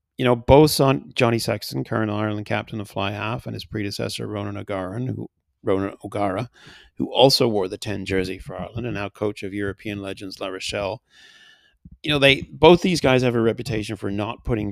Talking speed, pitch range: 180 wpm, 100-125 Hz